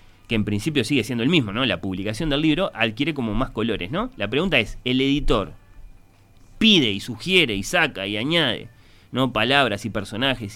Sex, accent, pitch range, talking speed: male, Argentinian, 105-145 Hz, 190 wpm